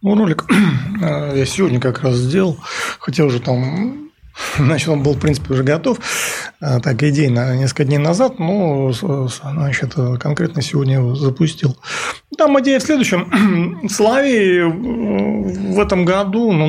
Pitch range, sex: 130-180 Hz, male